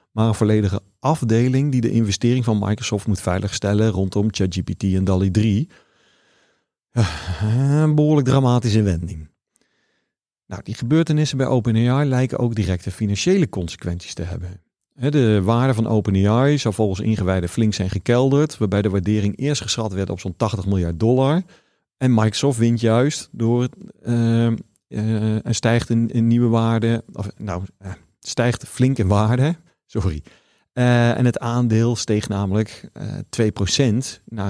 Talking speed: 130 wpm